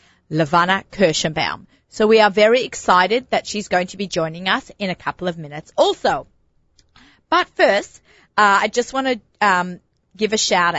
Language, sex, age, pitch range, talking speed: English, female, 30-49, 180-225 Hz, 165 wpm